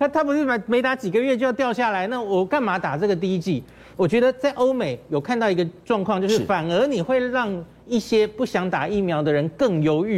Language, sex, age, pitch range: Chinese, male, 40-59, 160-230 Hz